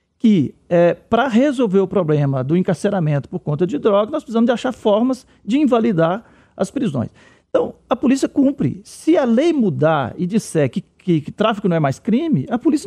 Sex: male